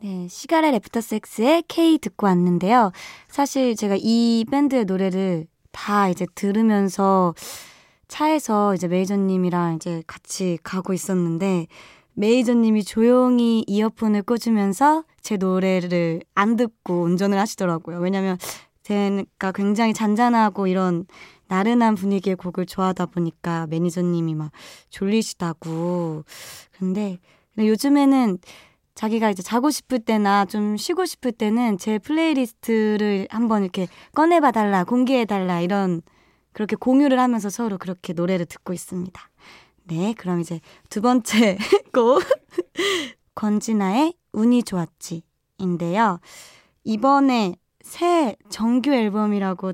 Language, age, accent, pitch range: Korean, 20-39, native, 185-230 Hz